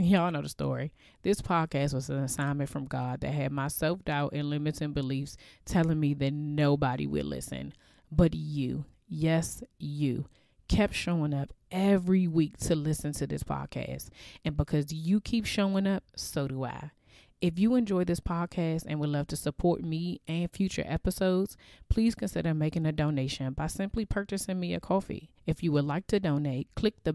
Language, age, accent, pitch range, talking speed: English, 30-49, American, 140-175 Hz, 180 wpm